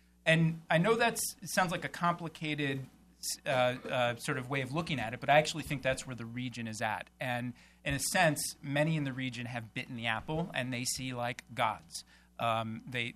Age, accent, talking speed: 40-59, American, 210 wpm